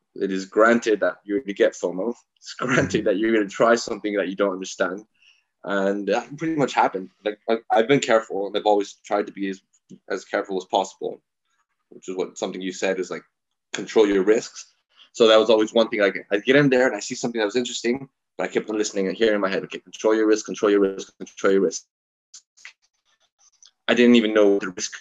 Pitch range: 95-115 Hz